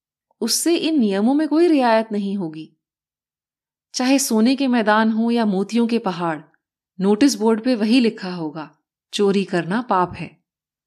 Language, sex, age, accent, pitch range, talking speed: Hindi, female, 30-49, native, 185-255 Hz, 150 wpm